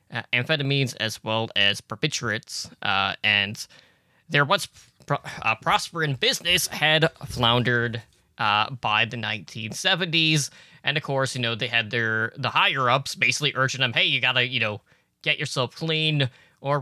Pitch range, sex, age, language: 115-150 Hz, male, 20-39, English